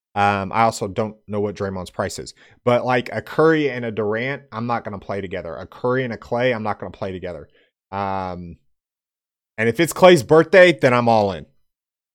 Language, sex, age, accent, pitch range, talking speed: English, male, 30-49, American, 105-135 Hz, 210 wpm